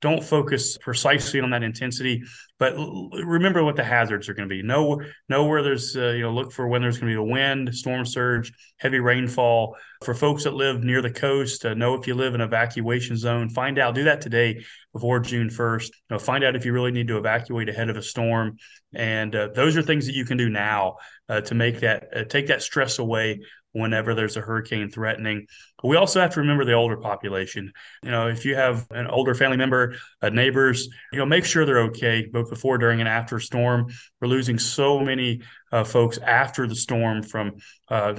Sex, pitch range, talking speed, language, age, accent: male, 115-130 Hz, 215 wpm, English, 30-49, American